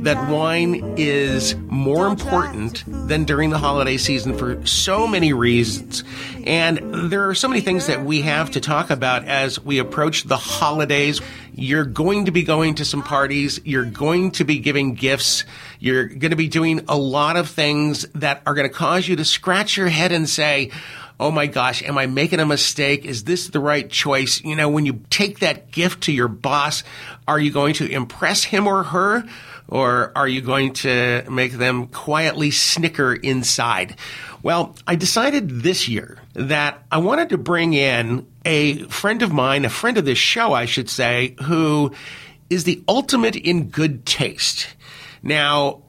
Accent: American